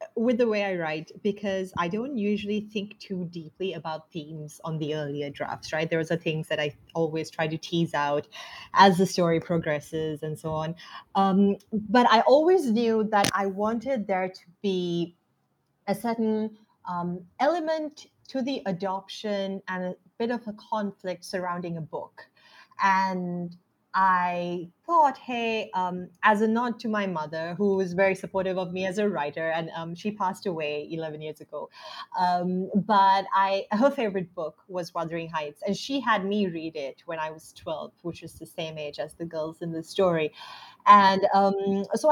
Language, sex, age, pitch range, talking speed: English, female, 30-49, 165-220 Hz, 175 wpm